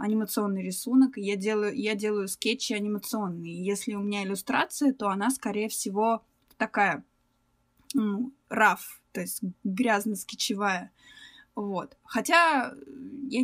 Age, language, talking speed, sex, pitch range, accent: 20-39, Russian, 110 wpm, female, 210-260 Hz, native